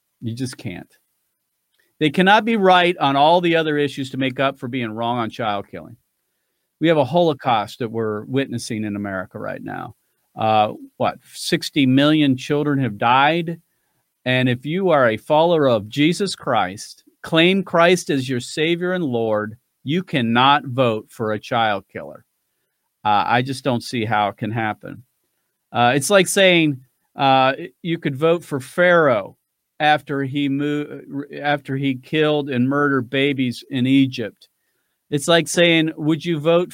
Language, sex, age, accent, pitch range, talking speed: English, male, 40-59, American, 120-165 Hz, 160 wpm